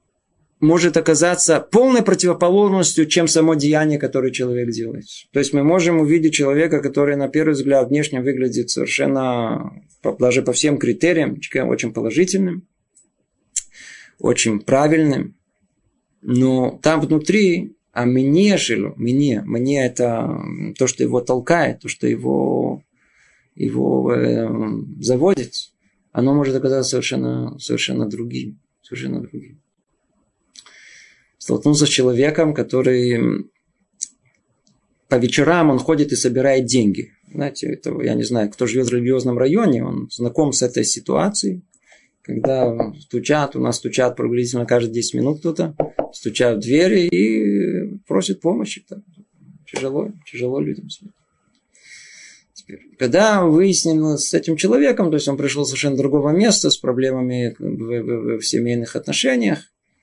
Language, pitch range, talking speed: Russian, 125-165 Hz, 125 wpm